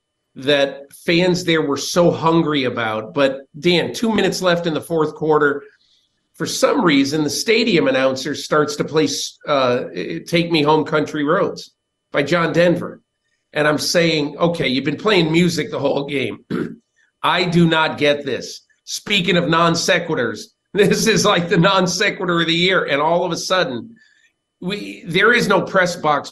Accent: American